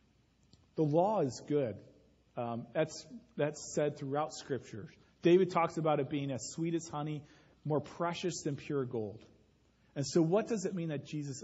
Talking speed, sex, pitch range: 170 wpm, male, 140-185 Hz